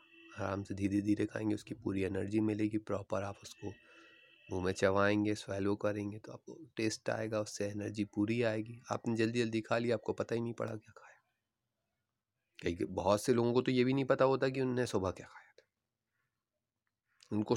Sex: male